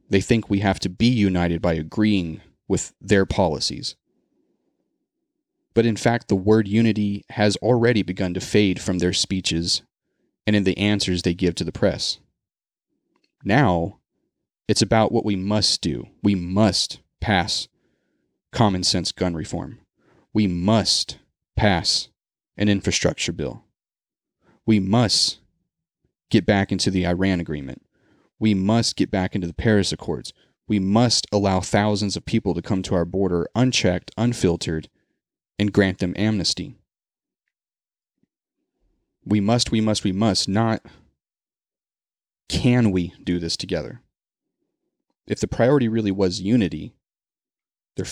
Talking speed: 135 wpm